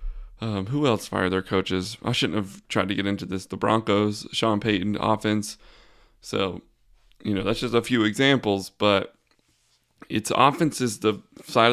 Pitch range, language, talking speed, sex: 100-115 Hz, English, 170 wpm, male